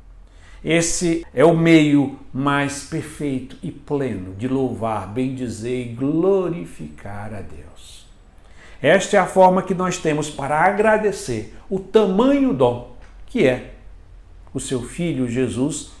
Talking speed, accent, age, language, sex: 125 wpm, Brazilian, 60-79, Portuguese, male